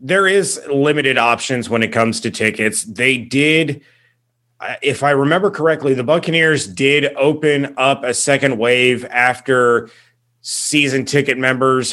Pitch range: 120-145 Hz